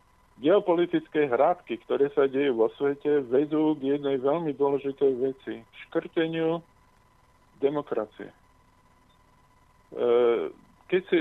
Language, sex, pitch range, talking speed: Slovak, male, 130-165 Hz, 85 wpm